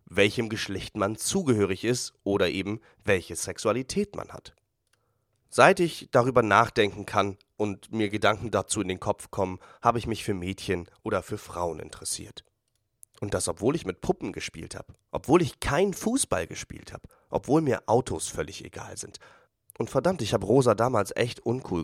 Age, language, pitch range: 30-49, German, 100-120 Hz